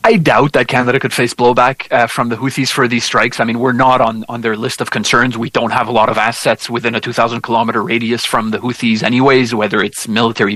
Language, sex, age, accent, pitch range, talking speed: English, male, 30-49, Canadian, 115-140 Hz, 240 wpm